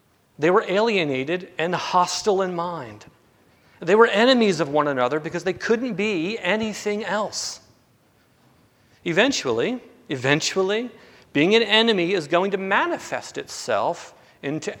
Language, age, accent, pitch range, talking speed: English, 40-59, American, 150-215 Hz, 120 wpm